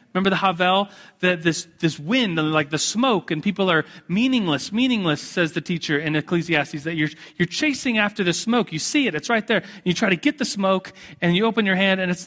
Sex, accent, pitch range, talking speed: male, American, 170-230 Hz, 230 wpm